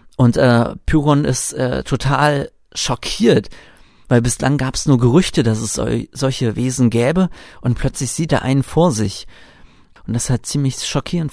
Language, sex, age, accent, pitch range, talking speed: German, male, 40-59, German, 110-140 Hz, 170 wpm